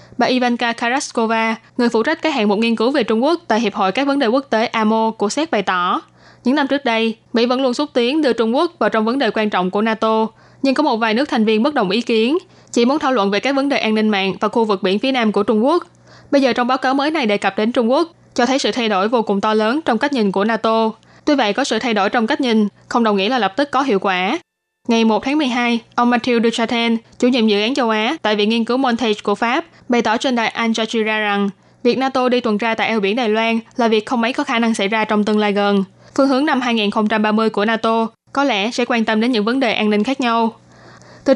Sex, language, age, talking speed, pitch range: female, Vietnamese, 10-29, 280 wpm, 215-255 Hz